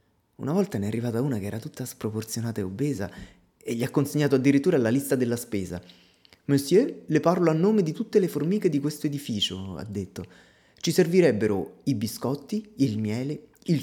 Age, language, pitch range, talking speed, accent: 30-49, Italian, 100-140 Hz, 180 wpm, native